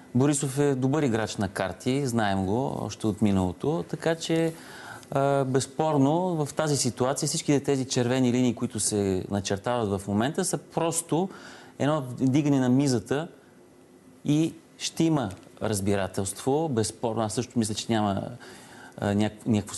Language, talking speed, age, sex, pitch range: Bulgarian, 130 wpm, 30-49, male, 110-140 Hz